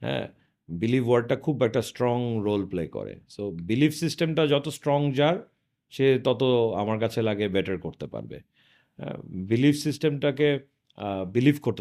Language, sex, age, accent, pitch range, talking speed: Bengali, male, 40-59, native, 105-145 Hz, 135 wpm